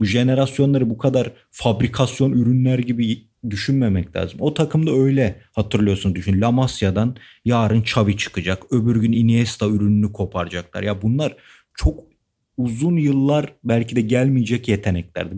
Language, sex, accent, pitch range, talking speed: Turkish, male, native, 110-145 Hz, 125 wpm